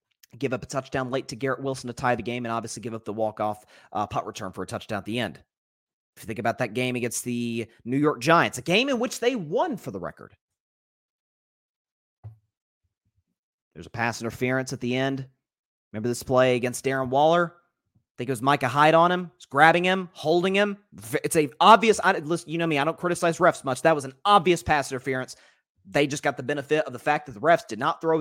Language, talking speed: English, 220 wpm